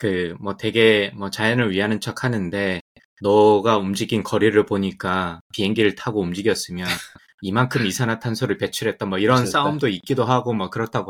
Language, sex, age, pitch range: Korean, male, 20-39, 100-130 Hz